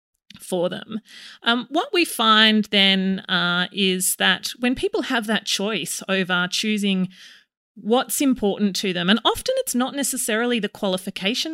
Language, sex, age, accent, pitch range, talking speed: English, female, 30-49, Australian, 190-235 Hz, 145 wpm